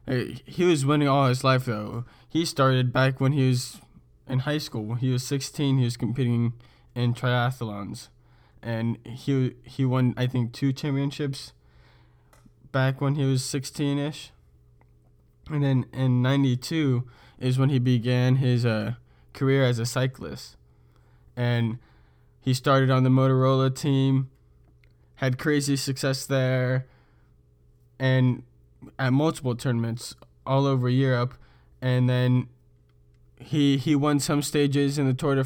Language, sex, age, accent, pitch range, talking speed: English, male, 20-39, American, 115-135 Hz, 140 wpm